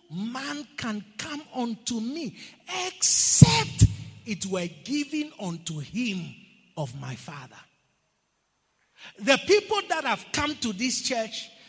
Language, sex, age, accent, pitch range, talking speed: English, male, 40-59, Nigerian, 175-290 Hz, 115 wpm